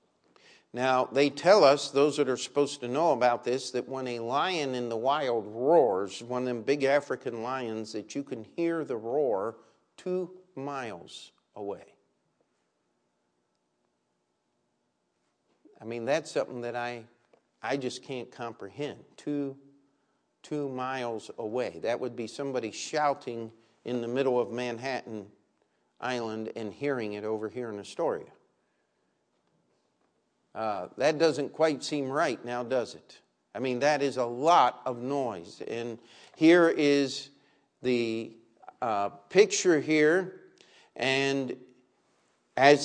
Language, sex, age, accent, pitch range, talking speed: English, male, 50-69, American, 115-150 Hz, 130 wpm